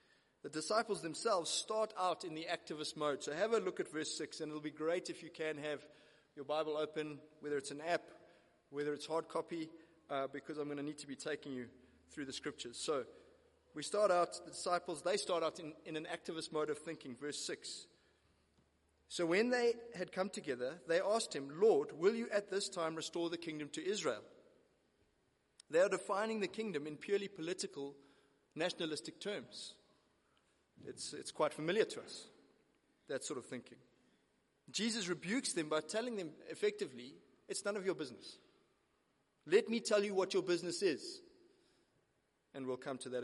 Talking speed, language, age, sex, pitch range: 180 wpm, English, 30-49, male, 150-210 Hz